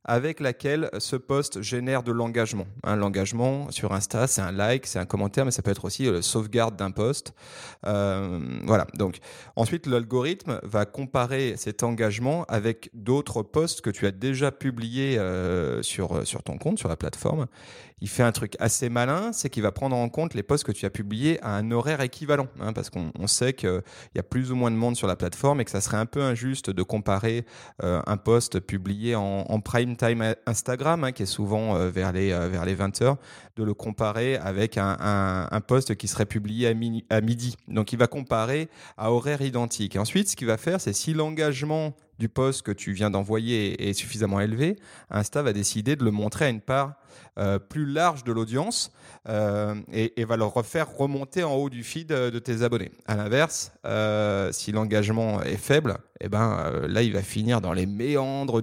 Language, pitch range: French, 105-130 Hz